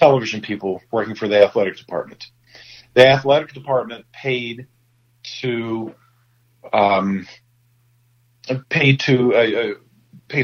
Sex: male